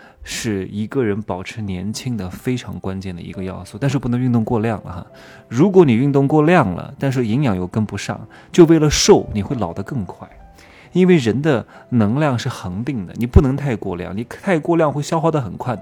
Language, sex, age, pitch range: Chinese, male, 20-39, 100-135 Hz